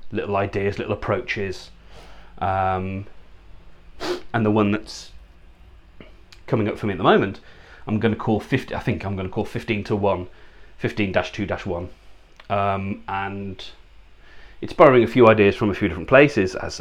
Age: 30-49